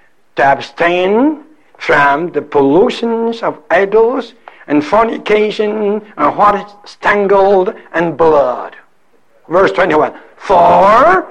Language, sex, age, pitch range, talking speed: English, male, 60-79, 195-320 Hz, 95 wpm